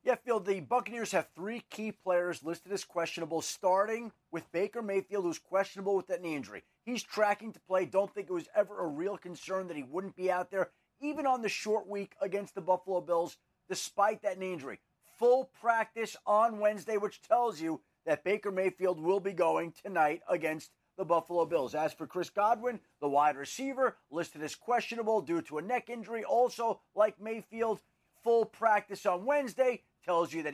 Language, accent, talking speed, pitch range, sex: English, American, 185 wpm, 180-230 Hz, male